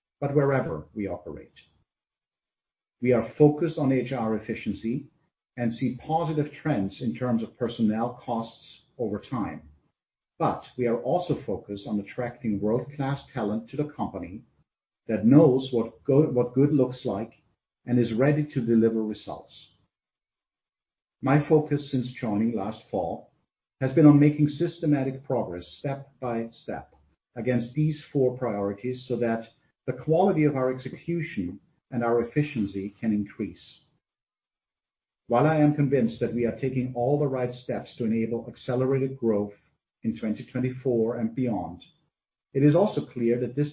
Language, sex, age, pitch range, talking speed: English, male, 50-69, 115-140 Hz, 145 wpm